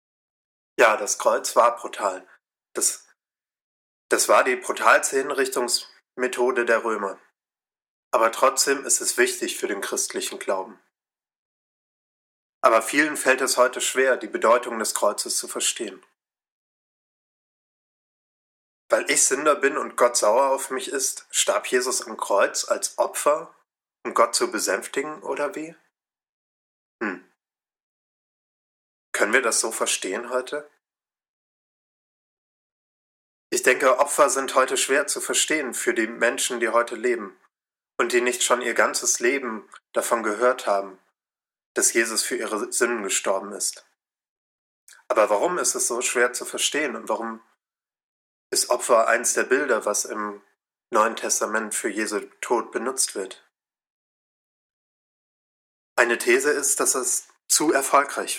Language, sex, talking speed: German, male, 130 wpm